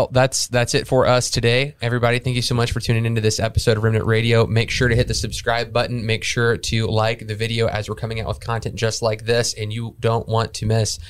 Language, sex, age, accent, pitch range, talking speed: English, male, 20-39, American, 110-120 Hz, 260 wpm